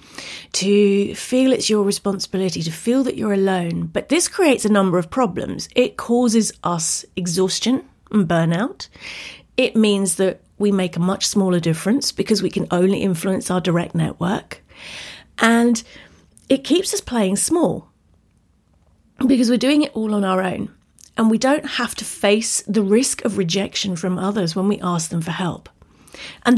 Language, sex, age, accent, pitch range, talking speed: English, female, 40-59, British, 190-250 Hz, 165 wpm